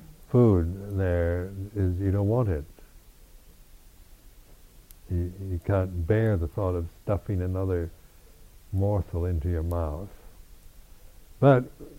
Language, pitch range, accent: English, 85-115 Hz, American